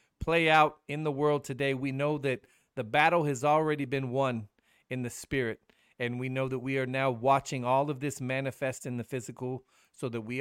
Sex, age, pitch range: male, 50-69, 125-150 Hz